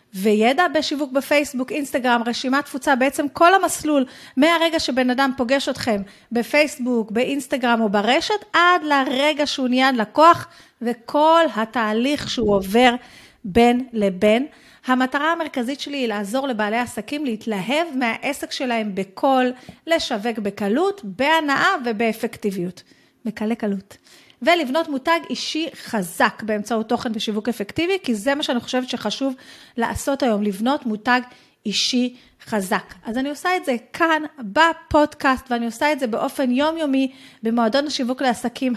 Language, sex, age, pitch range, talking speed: Hebrew, female, 30-49, 235-290 Hz, 125 wpm